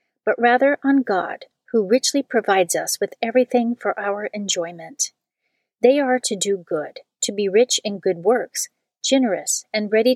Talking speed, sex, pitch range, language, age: 160 wpm, female, 190-250 Hz, English, 40-59